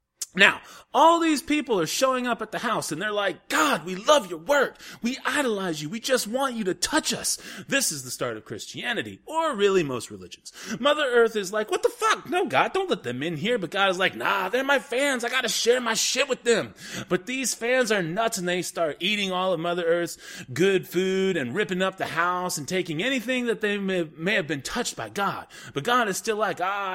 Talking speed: 235 wpm